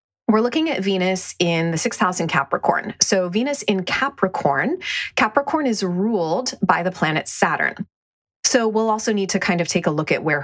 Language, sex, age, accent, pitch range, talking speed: English, female, 30-49, American, 170-220 Hz, 190 wpm